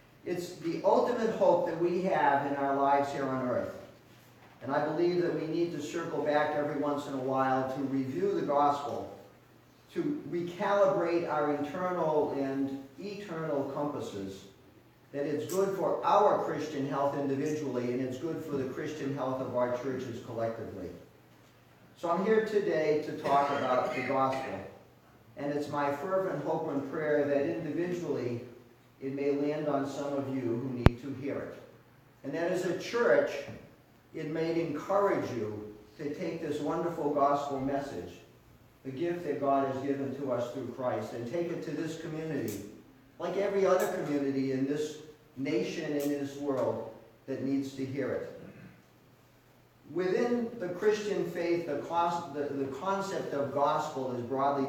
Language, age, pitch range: English, 50-69, 135-165 Hz